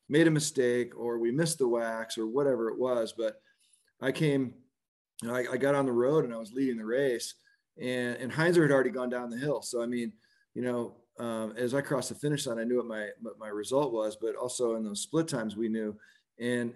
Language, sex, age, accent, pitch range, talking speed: English, male, 40-59, American, 115-135 Hz, 240 wpm